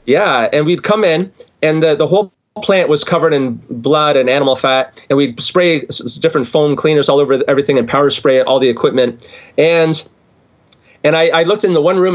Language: English